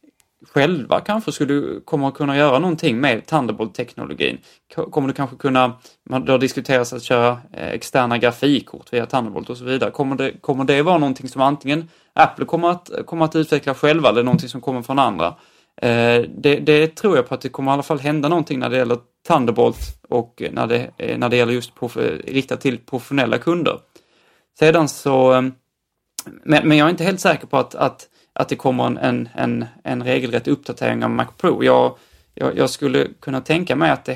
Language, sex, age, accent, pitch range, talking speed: Swedish, male, 30-49, native, 125-150 Hz, 190 wpm